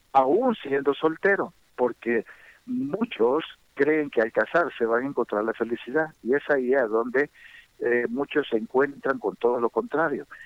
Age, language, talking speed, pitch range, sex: 50-69, Spanish, 155 wpm, 115-155 Hz, male